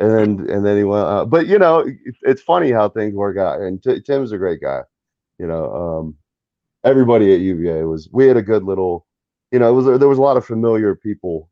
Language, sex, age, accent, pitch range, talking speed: English, male, 30-49, American, 85-110 Hz, 235 wpm